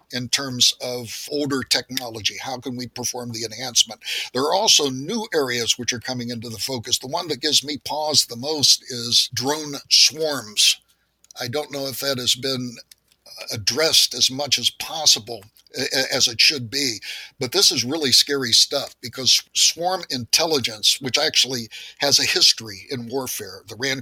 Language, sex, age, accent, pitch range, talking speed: English, male, 60-79, American, 120-140 Hz, 165 wpm